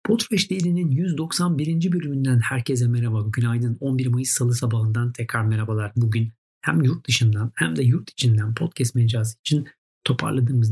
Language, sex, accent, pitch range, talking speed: Turkish, male, native, 115-145 Hz, 140 wpm